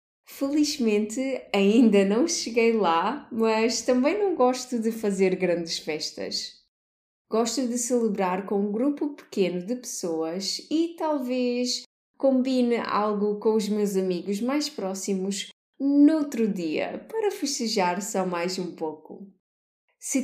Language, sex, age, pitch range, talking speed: Portuguese, female, 20-39, 185-255 Hz, 120 wpm